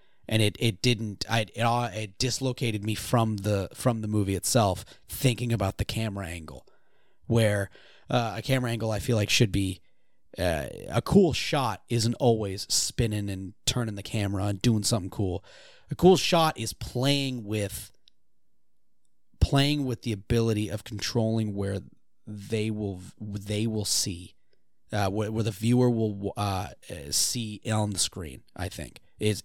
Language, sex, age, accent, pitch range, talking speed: English, male, 30-49, American, 100-125 Hz, 160 wpm